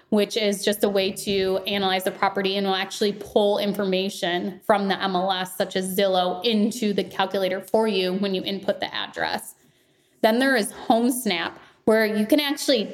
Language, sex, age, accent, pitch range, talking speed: English, female, 20-39, American, 185-210 Hz, 175 wpm